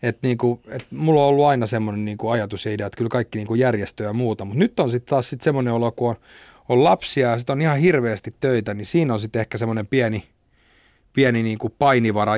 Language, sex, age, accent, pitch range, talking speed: Finnish, male, 30-49, native, 105-125 Hz, 225 wpm